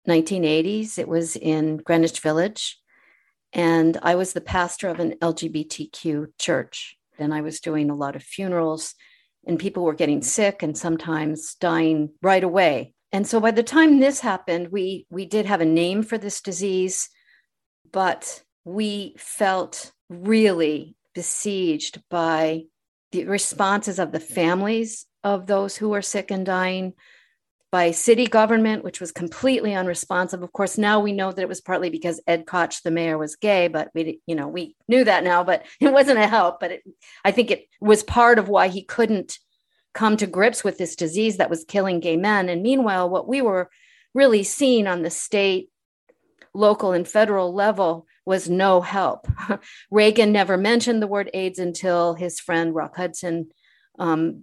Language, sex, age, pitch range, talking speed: English, female, 50-69, 165-205 Hz, 165 wpm